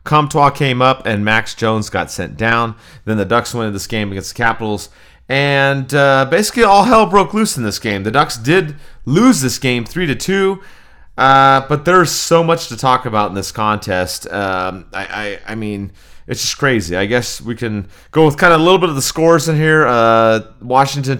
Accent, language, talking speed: American, English, 205 wpm